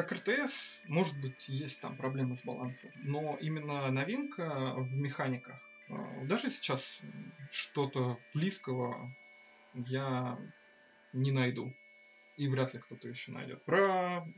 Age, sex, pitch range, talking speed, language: 20-39, male, 130-180 Hz, 115 wpm, Russian